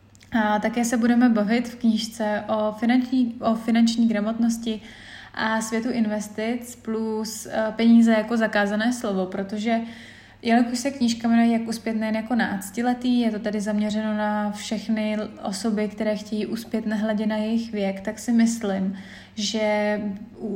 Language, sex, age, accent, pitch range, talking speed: Czech, female, 20-39, native, 210-230 Hz, 140 wpm